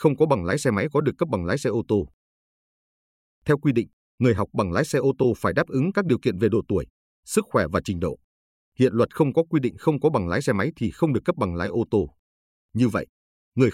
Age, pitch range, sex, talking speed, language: 30-49, 100-140 Hz, male, 265 wpm, Vietnamese